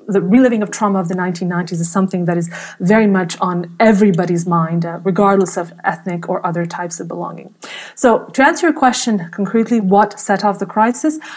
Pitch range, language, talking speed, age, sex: 185-225 Hz, English, 190 wpm, 30-49, female